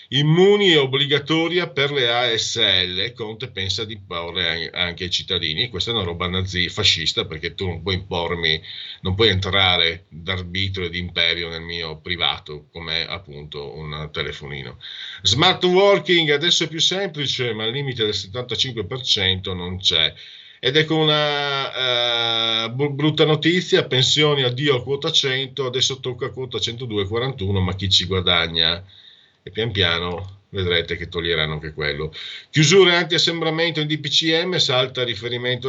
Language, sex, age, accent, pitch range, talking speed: Italian, male, 40-59, native, 95-145 Hz, 145 wpm